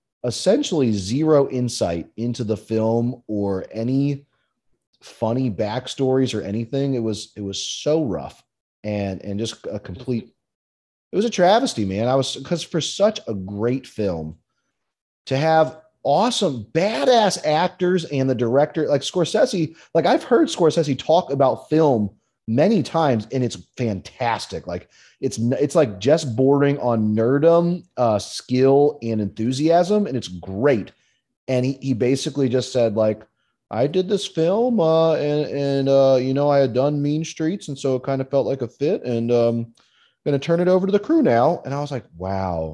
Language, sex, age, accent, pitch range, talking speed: English, male, 30-49, American, 110-155 Hz, 170 wpm